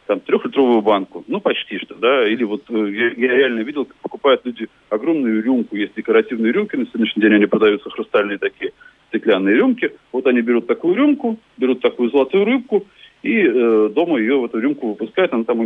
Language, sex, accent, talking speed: Russian, male, native, 190 wpm